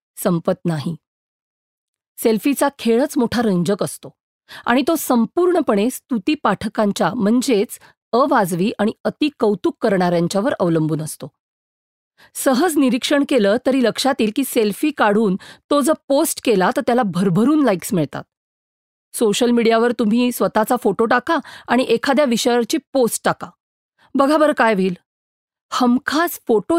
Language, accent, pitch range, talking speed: Marathi, native, 205-275 Hz, 115 wpm